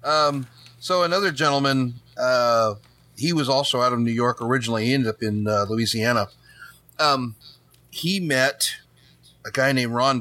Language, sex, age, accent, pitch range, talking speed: English, male, 40-59, American, 110-130 Hz, 155 wpm